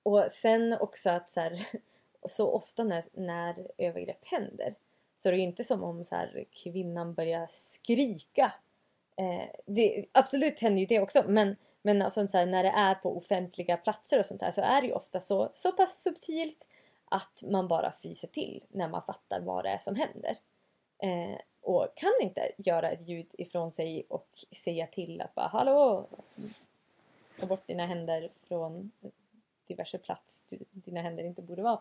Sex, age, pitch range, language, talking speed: female, 20-39, 180-240 Hz, Swedish, 175 wpm